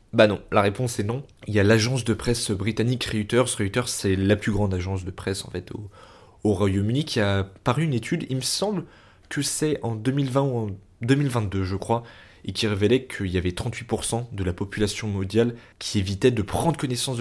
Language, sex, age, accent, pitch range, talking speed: French, male, 20-39, French, 95-125 Hz, 210 wpm